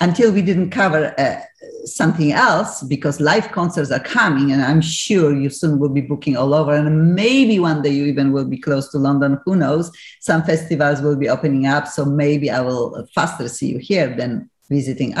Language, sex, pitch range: English, female, 140-185 Hz